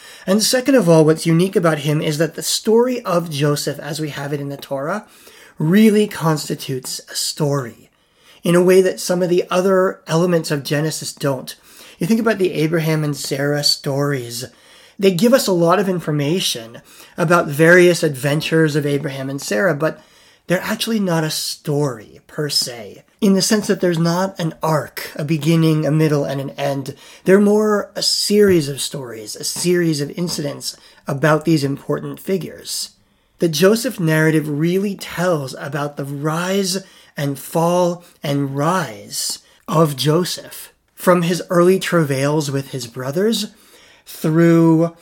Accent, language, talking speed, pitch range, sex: American, English, 155 wpm, 145-180 Hz, male